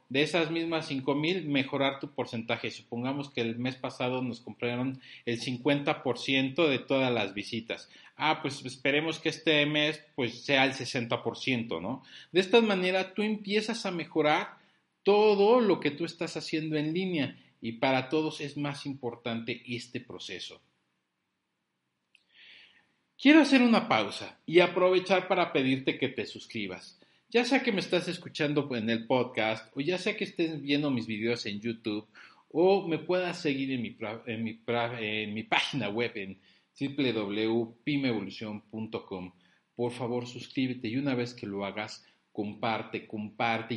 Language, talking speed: Spanish, 145 wpm